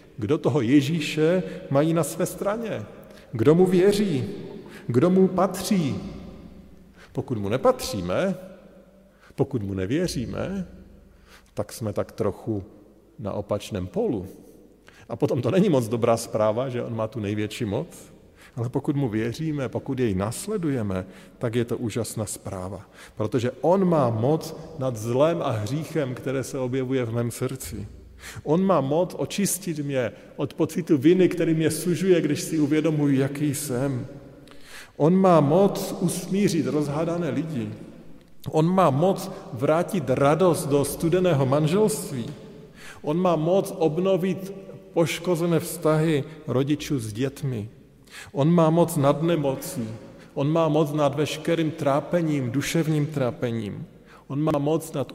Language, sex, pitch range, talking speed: Slovak, male, 125-170 Hz, 130 wpm